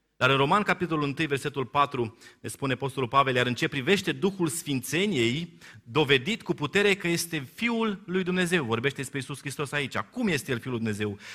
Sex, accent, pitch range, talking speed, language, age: male, native, 125-165 Hz, 190 wpm, Romanian, 30-49